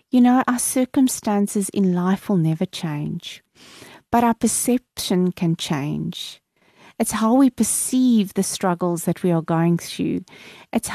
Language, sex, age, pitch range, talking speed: English, female, 40-59, 185-250 Hz, 145 wpm